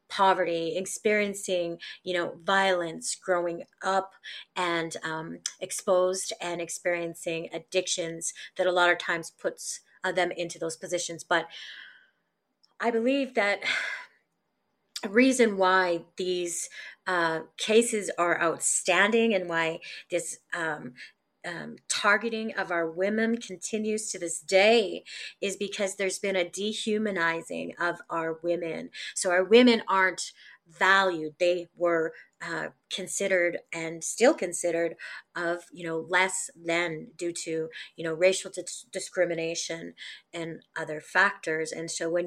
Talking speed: 120 wpm